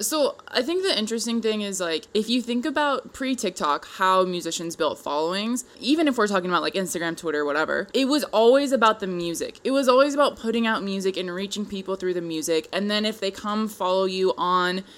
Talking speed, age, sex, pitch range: 210 wpm, 20-39, female, 185-240 Hz